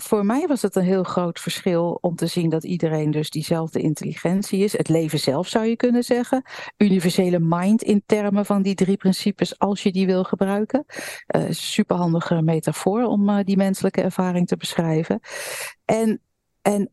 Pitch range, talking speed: 170-215 Hz, 175 wpm